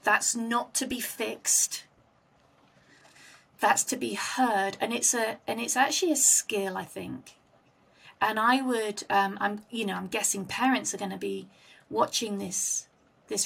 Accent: British